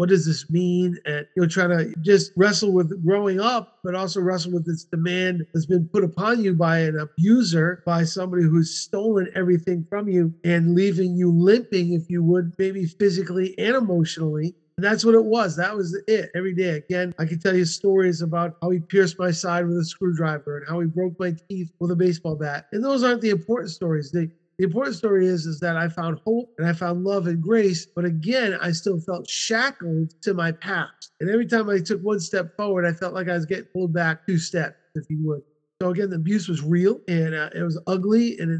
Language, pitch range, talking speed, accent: English, 170-200 Hz, 225 wpm, American